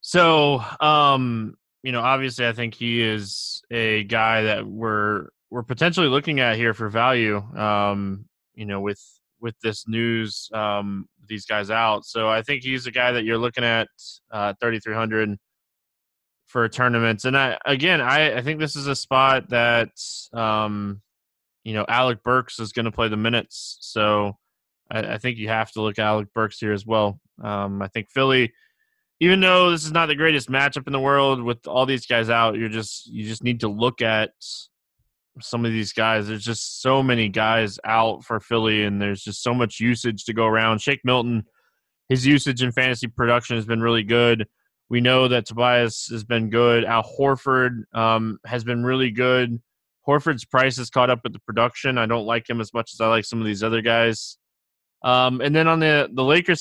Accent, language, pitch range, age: American, English, 110-130 Hz, 20-39